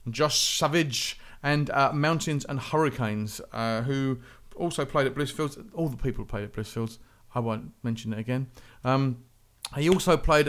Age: 40-59